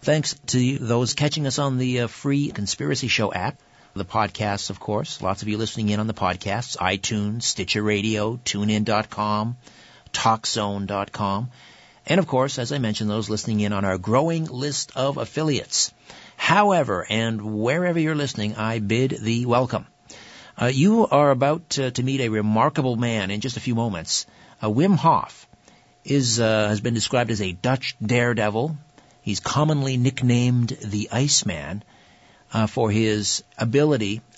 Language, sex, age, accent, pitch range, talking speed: English, male, 50-69, American, 105-135 Hz, 155 wpm